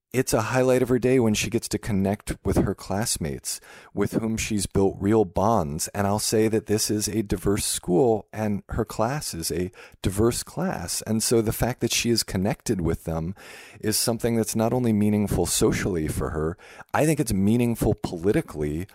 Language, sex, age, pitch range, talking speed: English, male, 40-59, 85-115 Hz, 190 wpm